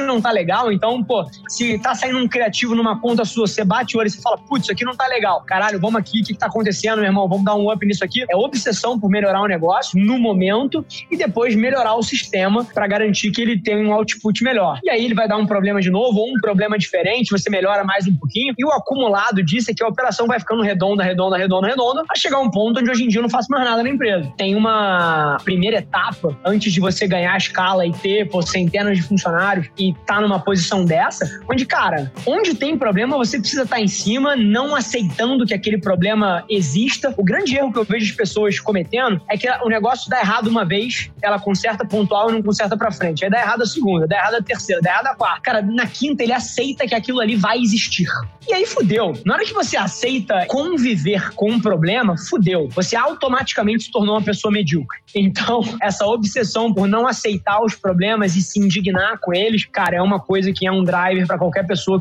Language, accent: Portuguese, Brazilian